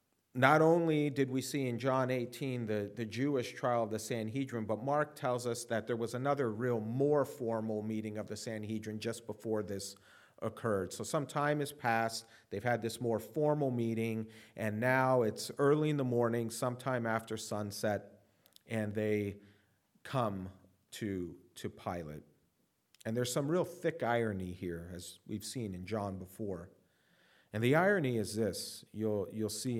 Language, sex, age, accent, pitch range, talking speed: English, male, 40-59, American, 105-130 Hz, 165 wpm